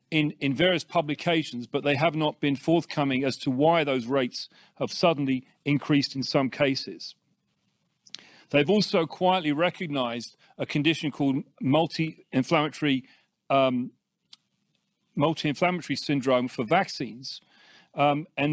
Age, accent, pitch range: 40-59, British, 140-175 Hz